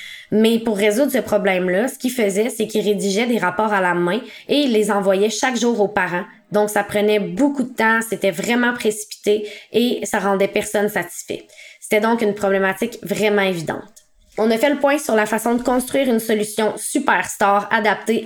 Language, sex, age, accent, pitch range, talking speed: English, female, 20-39, Canadian, 200-230 Hz, 190 wpm